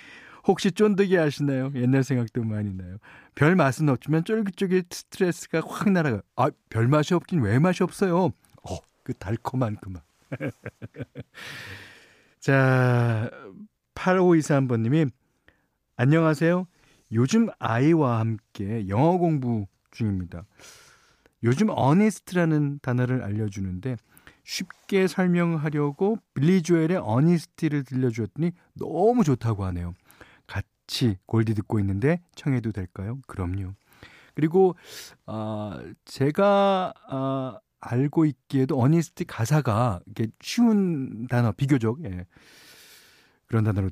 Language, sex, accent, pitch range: Korean, male, native, 110-165 Hz